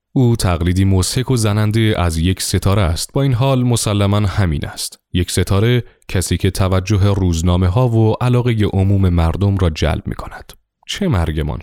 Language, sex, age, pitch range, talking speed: Persian, male, 30-49, 85-120 Hz, 165 wpm